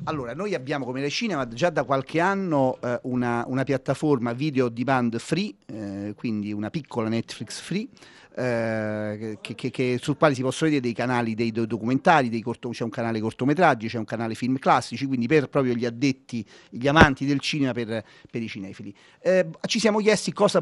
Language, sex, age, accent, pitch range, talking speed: Italian, male, 40-59, native, 120-160 Hz, 180 wpm